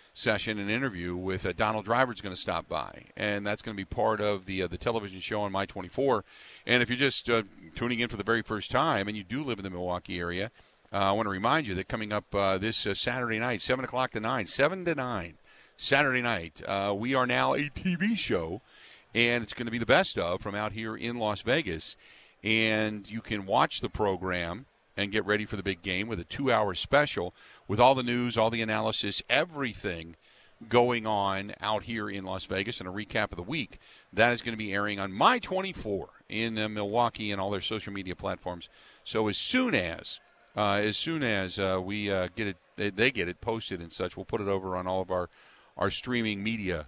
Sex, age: male, 50-69